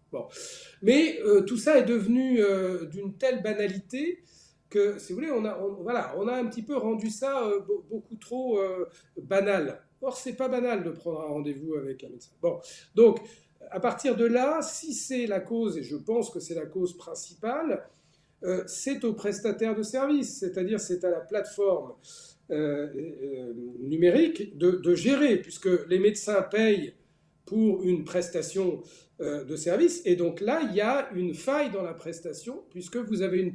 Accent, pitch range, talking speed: French, 175-245 Hz, 180 wpm